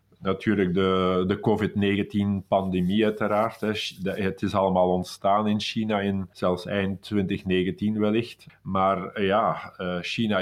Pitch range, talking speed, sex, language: 95-105 Hz, 110 wpm, male, Dutch